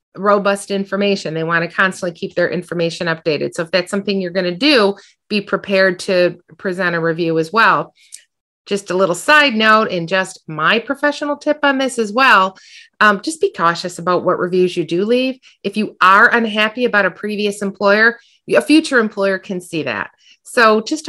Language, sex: English, female